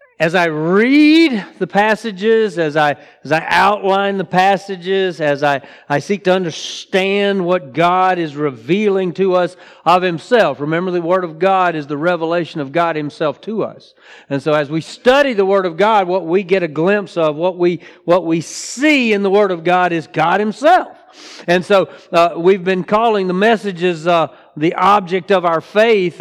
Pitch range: 150-195 Hz